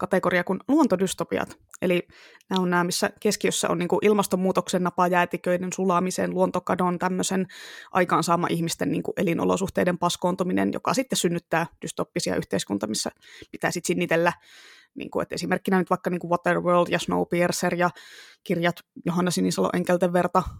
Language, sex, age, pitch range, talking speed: Finnish, female, 20-39, 175-200 Hz, 130 wpm